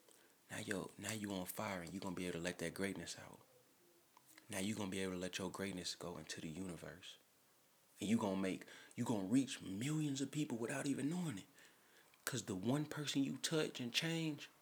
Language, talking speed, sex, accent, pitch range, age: English, 225 wpm, male, American, 90-145 Hz, 30-49